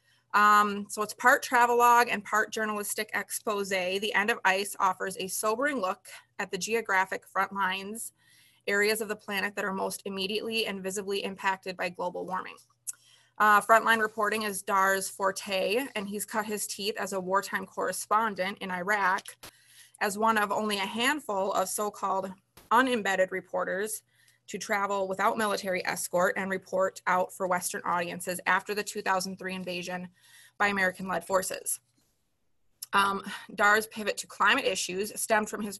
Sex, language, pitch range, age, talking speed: female, English, 190-215 Hz, 20-39, 150 wpm